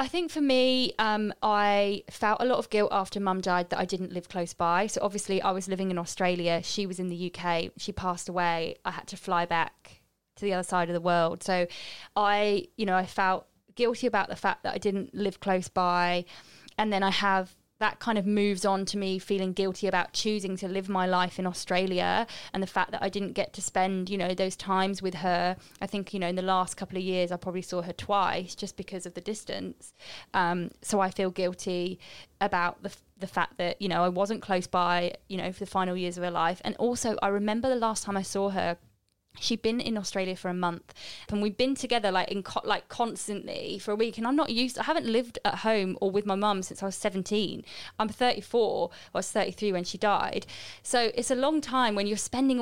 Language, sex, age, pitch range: English, female, 20-39, 180-210 Hz